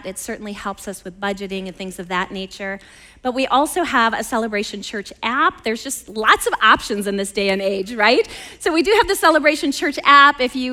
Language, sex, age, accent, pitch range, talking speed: English, female, 30-49, American, 200-265 Hz, 225 wpm